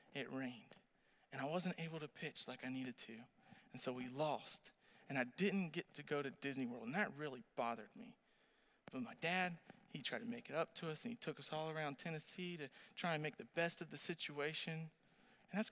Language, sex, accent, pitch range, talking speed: English, male, American, 155-235 Hz, 225 wpm